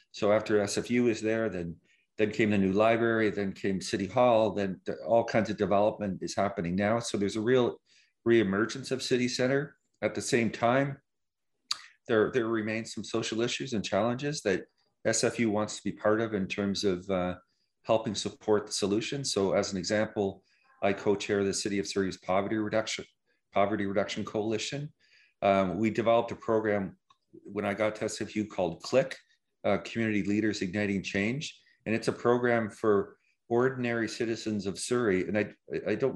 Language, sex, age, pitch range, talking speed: English, male, 40-59, 95-115 Hz, 170 wpm